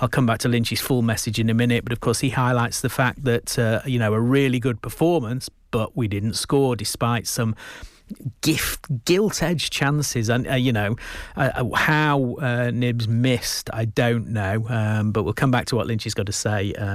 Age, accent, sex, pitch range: 40-59, British, male, 110-130 Hz